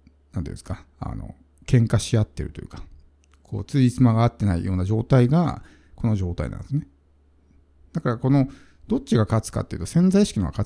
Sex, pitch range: male, 85-130 Hz